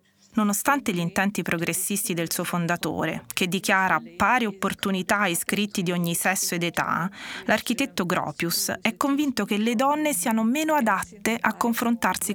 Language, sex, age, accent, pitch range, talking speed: Italian, female, 20-39, native, 175-230 Hz, 145 wpm